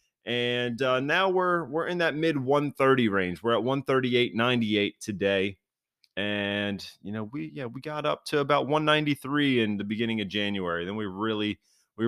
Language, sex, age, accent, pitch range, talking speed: English, male, 30-49, American, 105-125 Hz, 205 wpm